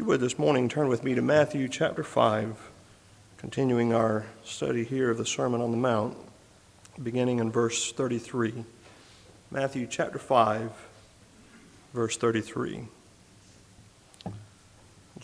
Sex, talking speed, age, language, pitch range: male, 115 wpm, 50-69, English, 110-135 Hz